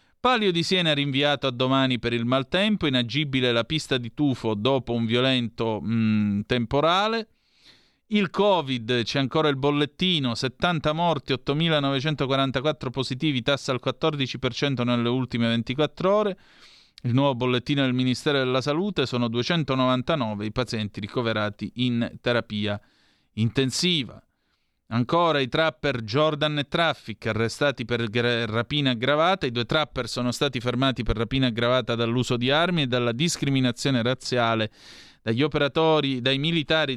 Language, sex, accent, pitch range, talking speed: Italian, male, native, 120-145 Hz, 135 wpm